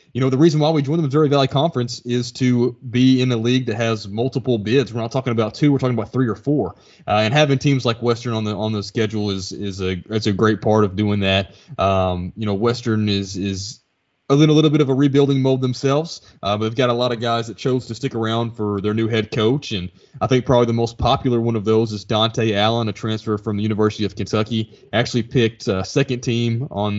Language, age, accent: English, 20-39, American